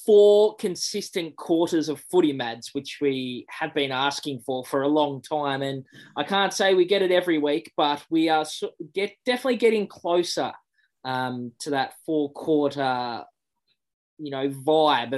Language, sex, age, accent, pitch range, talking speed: English, male, 20-39, Australian, 130-160 Hz, 160 wpm